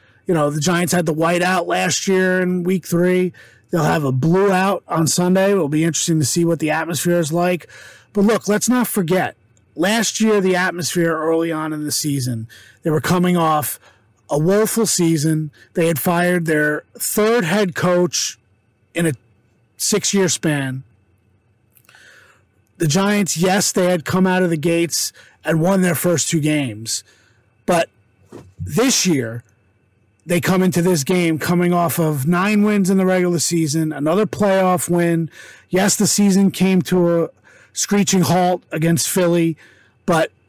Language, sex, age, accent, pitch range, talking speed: English, male, 30-49, American, 145-180 Hz, 160 wpm